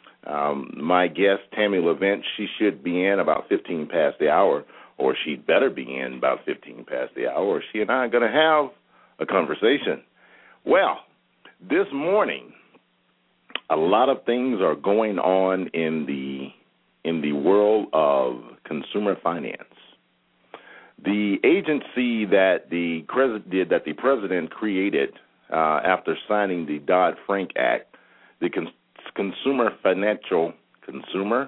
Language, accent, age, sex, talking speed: English, American, 50-69, male, 135 wpm